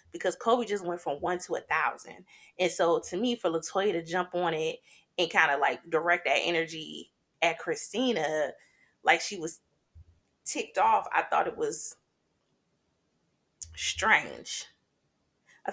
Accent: American